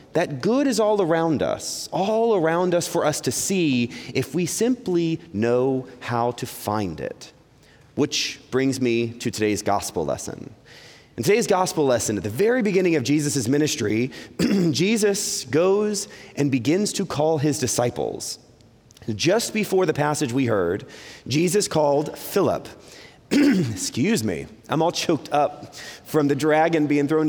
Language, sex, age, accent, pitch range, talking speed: English, male, 30-49, American, 130-180 Hz, 145 wpm